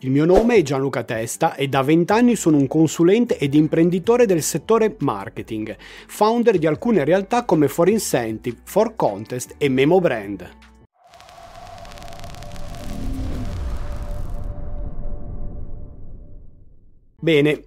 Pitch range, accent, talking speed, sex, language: 125-185 Hz, native, 105 wpm, male, Italian